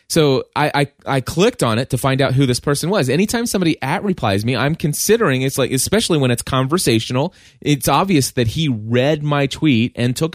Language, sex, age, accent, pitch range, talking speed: English, male, 20-39, American, 120-150 Hz, 210 wpm